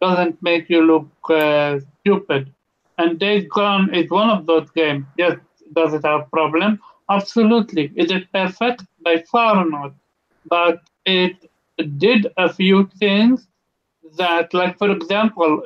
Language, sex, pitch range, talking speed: English, male, 170-205 Hz, 140 wpm